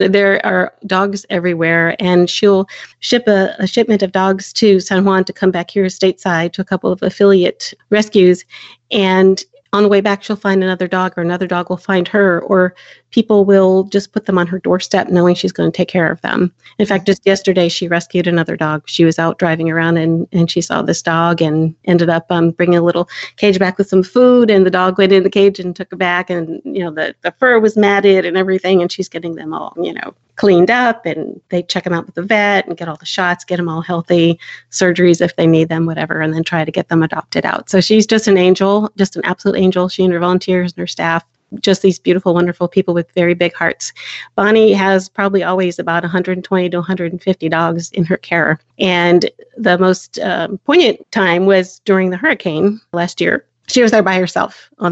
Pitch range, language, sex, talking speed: 175-195 Hz, English, female, 225 wpm